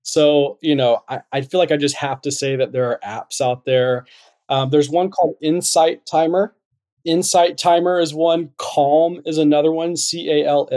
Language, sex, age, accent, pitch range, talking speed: English, male, 20-39, American, 130-155 Hz, 195 wpm